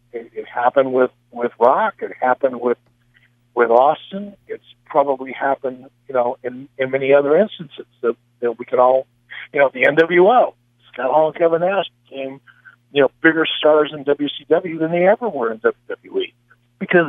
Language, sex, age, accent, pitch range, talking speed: English, male, 50-69, American, 120-155 Hz, 170 wpm